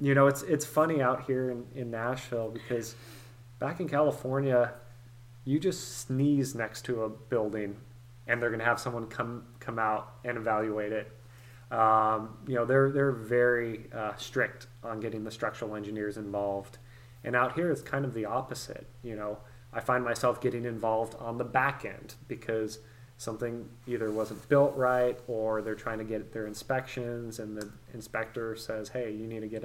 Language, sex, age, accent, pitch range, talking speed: English, male, 20-39, American, 110-125 Hz, 180 wpm